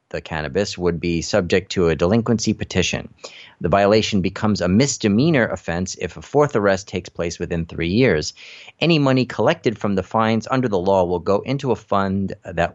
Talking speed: 185 wpm